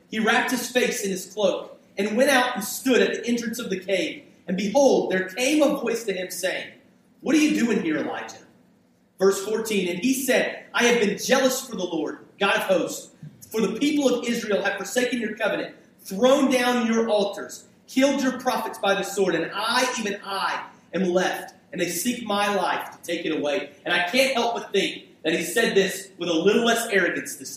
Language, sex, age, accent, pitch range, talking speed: English, male, 30-49, American, 200-265 Hz, 215 wpm